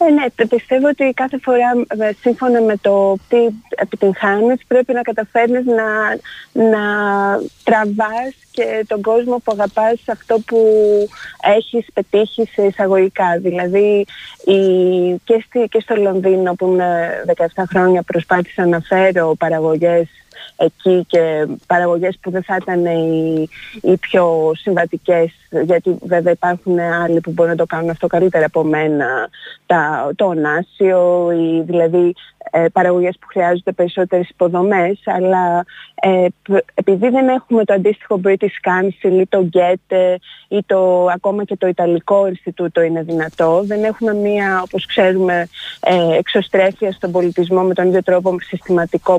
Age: 20-39